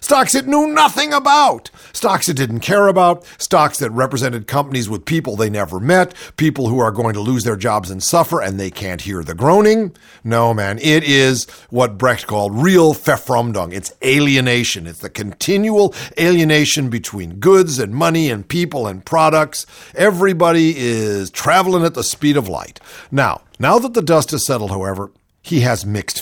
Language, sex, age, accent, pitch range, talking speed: English, male, 50-69, American, 105-170 Hz, 175 wpm